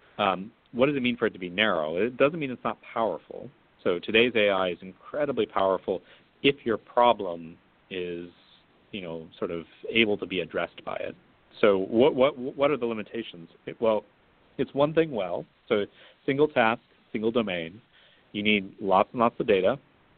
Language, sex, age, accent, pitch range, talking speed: English, male, 40-59, American, 90-115 Hz, 175 wpm